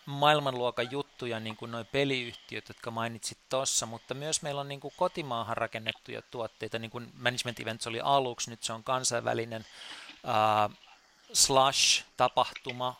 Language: Finnish